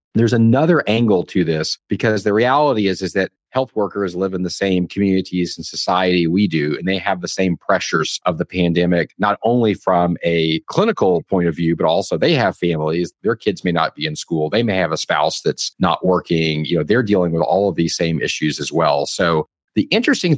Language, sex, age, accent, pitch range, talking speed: English, male, 40-59, American, 85-130 Hz, 220 wpm